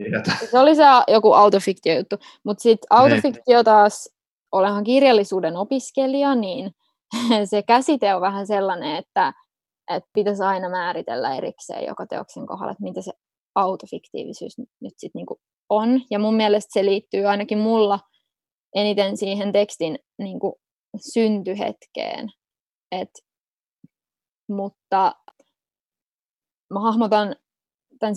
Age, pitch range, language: 20-39, 195-225 Hz, Finnish